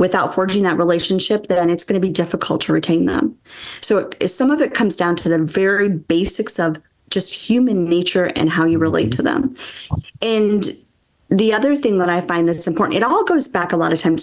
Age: 30-49